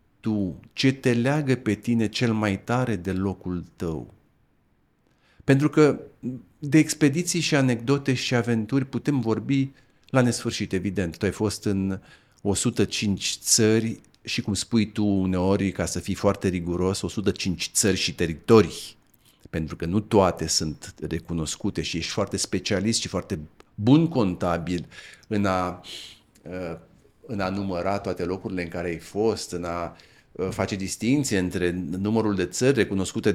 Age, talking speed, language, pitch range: 40-59, 140 wpm, Romanian, 90-115 Hz